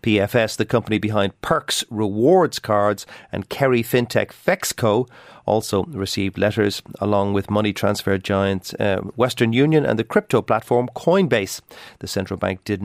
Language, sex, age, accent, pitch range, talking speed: English, male, 40-59, Irish, 105-130 Hz, 145 wpm